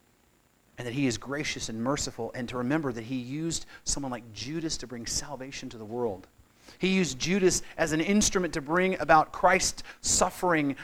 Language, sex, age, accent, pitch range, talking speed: English, male, 40-59, American, 110-150 Hz, 185 wpm